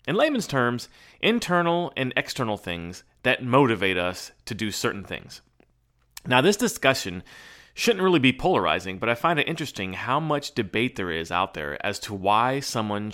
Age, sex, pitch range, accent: 30-49, male, 100-145 Hz, American